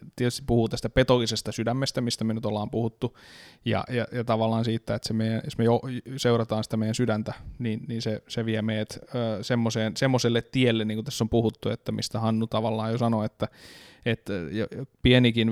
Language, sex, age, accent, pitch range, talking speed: Finnish, male, 20-39, native, 110-125 Hz, 185 wpm